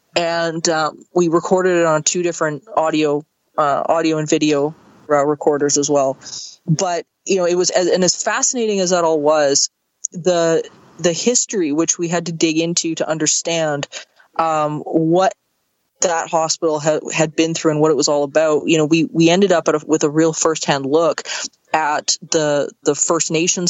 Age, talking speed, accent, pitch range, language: 20-39, 185 wpm, American, 155-190 Hz, English